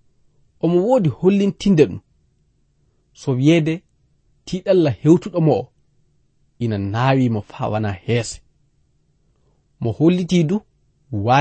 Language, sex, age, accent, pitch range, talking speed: English, male, 40-59, South African, 115-155 Hz, 115 wpm